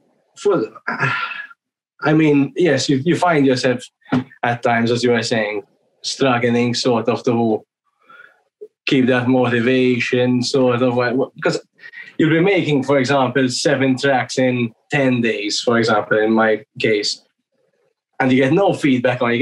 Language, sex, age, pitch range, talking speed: English, male, 20-39, 120-140 Hz, 140 wpm